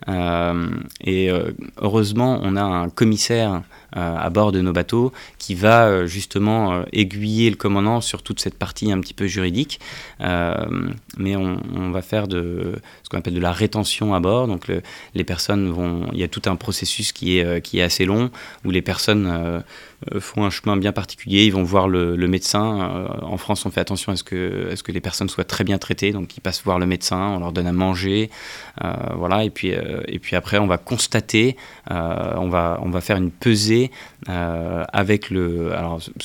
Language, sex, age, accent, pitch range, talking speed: French, male, 20-39, French, 90-105 Hz, 215 wpm